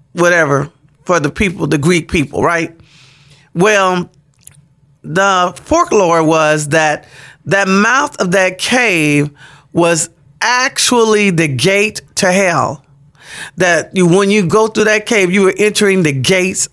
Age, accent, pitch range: 40-59, American, 155-205 Hz